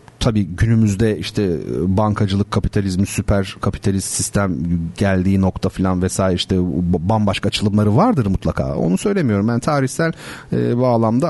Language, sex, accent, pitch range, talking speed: Turkish, male, native, 100-140 Hz, 125 wpm